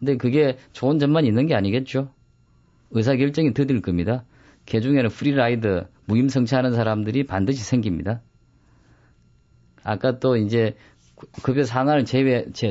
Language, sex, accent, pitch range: Korean, male, native, 110-145 Hz